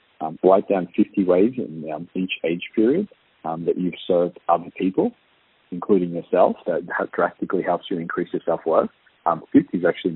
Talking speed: 170 wpm